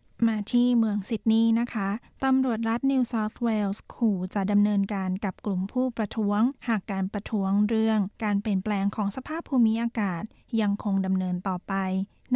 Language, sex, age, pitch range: Thai, female, 20-39, 200-230 Hz